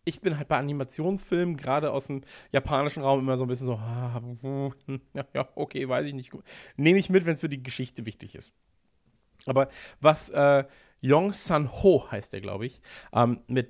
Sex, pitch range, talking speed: male, 125-165 Hz, 190 wpm